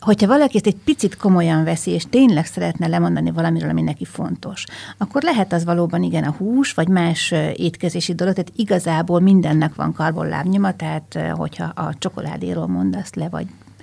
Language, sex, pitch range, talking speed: Hungarian, female, 160-185 Hz, 160 wpm